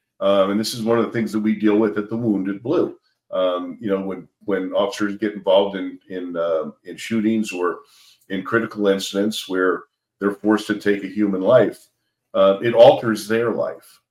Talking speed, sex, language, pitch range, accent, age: 195 wpm, male, English, 95-115 Hz, American, 50-69